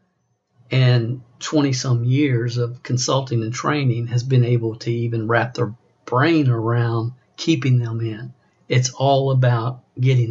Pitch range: 120-140 Hz